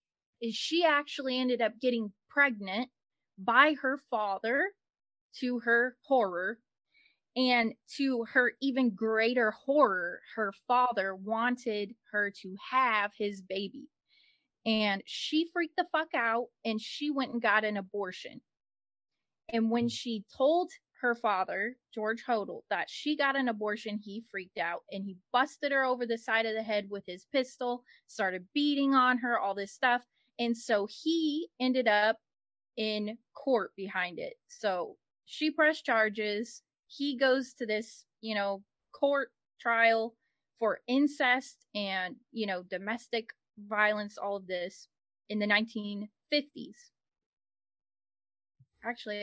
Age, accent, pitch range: 20-39, American, 210-270 Hz